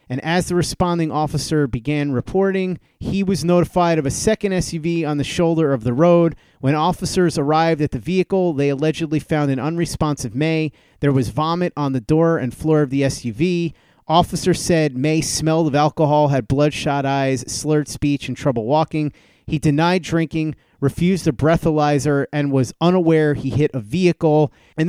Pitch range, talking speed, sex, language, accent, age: 140-170 Hz, 170 wpm, male, English, American, 30-49